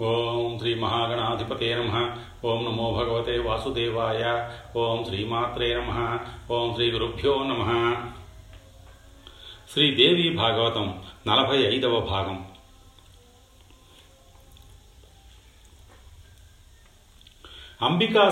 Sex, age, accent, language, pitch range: male, 40-59, native, Telugu, 100-120 Hz